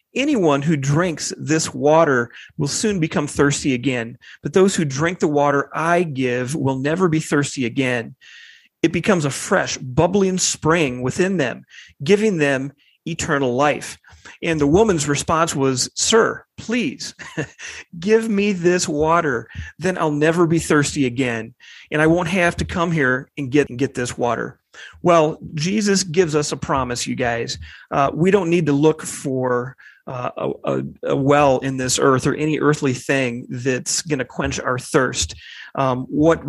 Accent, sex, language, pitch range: American, male, English, 130-165 Hz